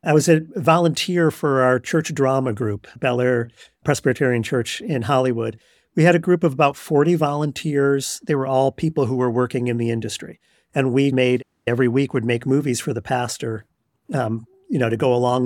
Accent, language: American, English